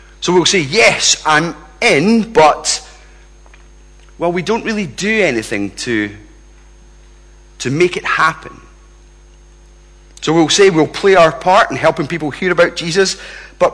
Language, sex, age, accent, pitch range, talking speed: English, male, 40-59, British, 155-210 Hz, 140 wpm